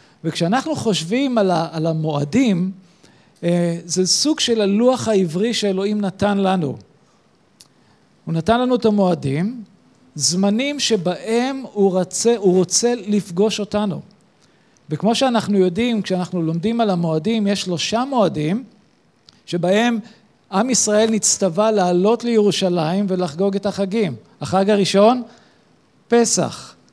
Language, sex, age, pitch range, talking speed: Hebrew, male, 50-69, 175-220 Hz, 105 wpm